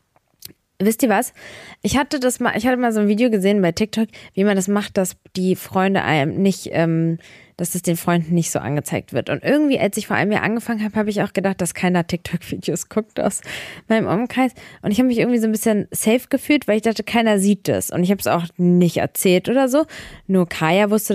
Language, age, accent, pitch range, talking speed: German, 20-39, German, 180-225 Hz, 235 wpm